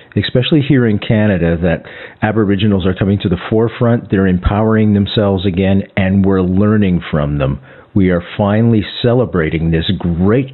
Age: 50-69